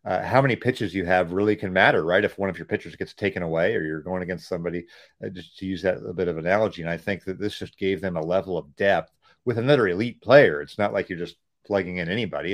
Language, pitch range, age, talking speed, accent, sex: English, 95-115 Hz, 40-59, 270 wpm, American, male